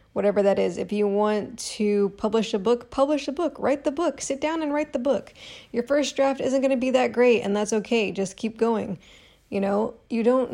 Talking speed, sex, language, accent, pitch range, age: 235 wpm, female, English, American, 205-245 Hz, 20-39